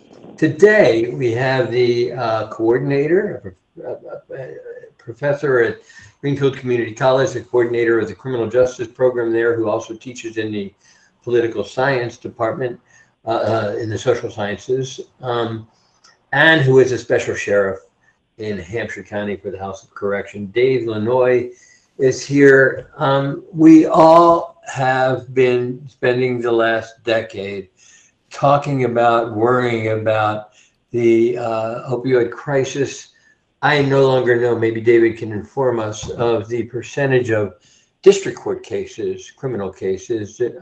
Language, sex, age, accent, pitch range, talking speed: English, male, 60-79, American, 110-135 Hz, 135 wpm